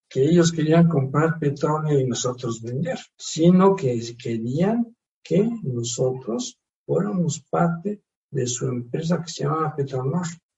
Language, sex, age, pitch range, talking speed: Spanish, male, 60-79, 130-185 Hz, 125 wpm